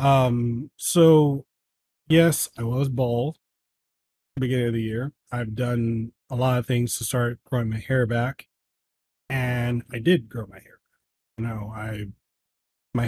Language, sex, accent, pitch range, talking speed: English, male, American, 115-140 Hz, 145 wpm